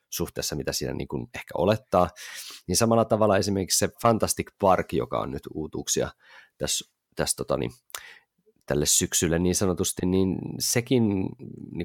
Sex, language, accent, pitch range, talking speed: male, Finnish, native, 80-110 Hz, 110 wpm